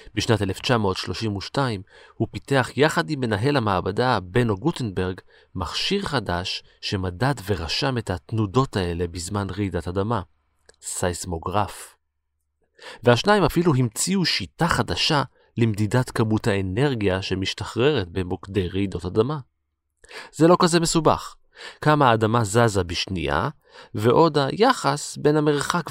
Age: 30-49